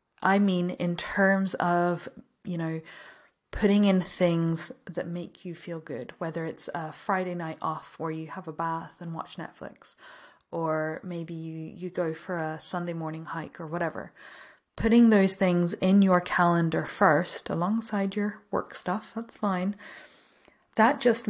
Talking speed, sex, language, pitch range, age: 160 wpm, female, English, 170-195 Hz, 20-39